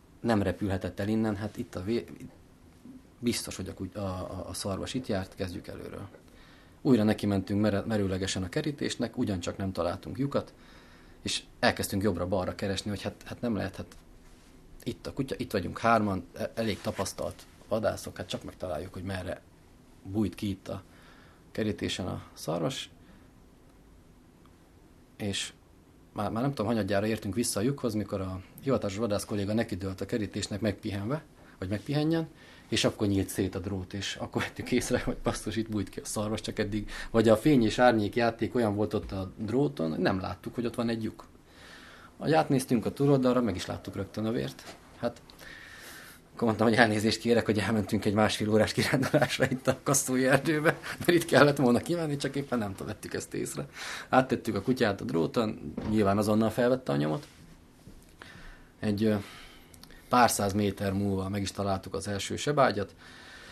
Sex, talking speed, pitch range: male, 165 wpm, 95-120 Hz